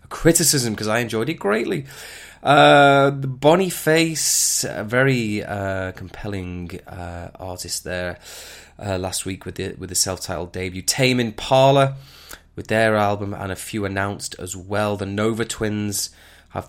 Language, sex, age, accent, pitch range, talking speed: English, male, 20-39, British, 90-110 Hz, 150 wpm